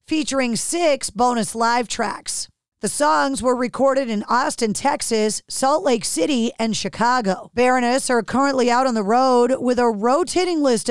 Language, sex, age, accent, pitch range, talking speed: English, female, 40-59, American, 225-275 Hz, 155 wpm